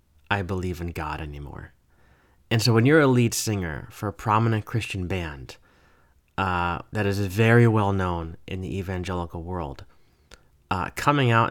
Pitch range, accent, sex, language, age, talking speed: 90-115 Hz, American, male, English, 30-49, 155 wpm